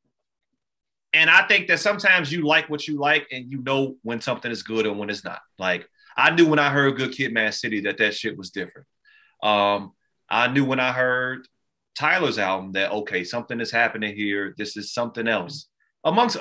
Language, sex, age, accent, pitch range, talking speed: English, male, 30-49, American, 110-145 Hz, 200 wpm